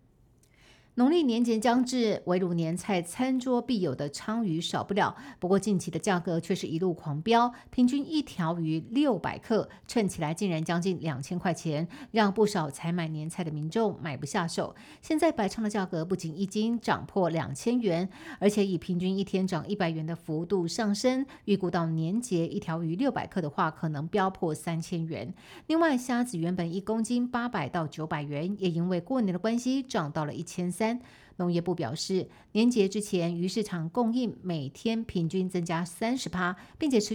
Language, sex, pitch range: Chinese, female, 165-220 Hz